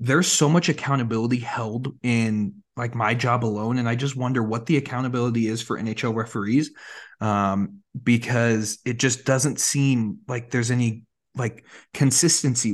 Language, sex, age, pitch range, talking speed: English, male, 30-49, 115-150 Hz, 150 wpm